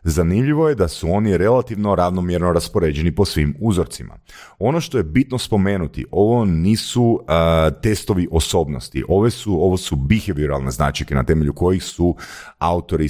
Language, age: Croatian, 40-59